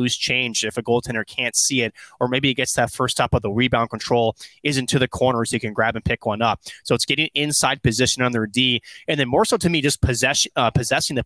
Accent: American